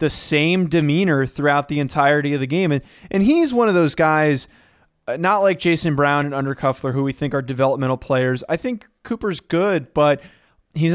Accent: American